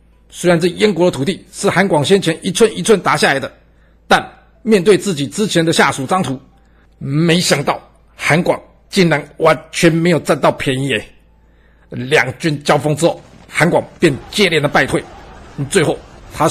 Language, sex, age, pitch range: Chinese, male, 50-69, 135-180 Hz